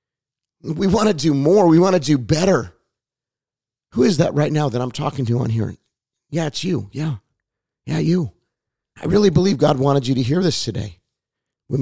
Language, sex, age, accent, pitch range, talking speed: English, male, 40-59, American, 115-150 Hz, 195 wpm